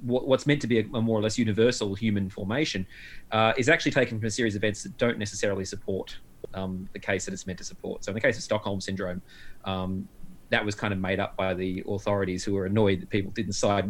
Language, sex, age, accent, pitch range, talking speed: English, male, 30-49, Australian, 100-125 Hz, 240 wpm